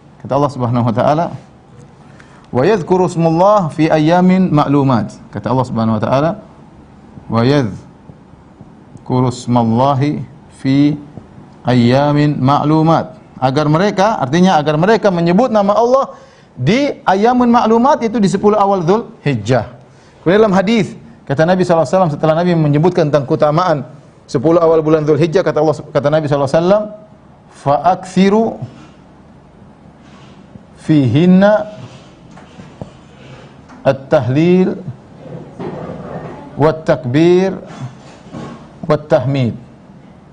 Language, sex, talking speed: Indonesian, male, 90 wpm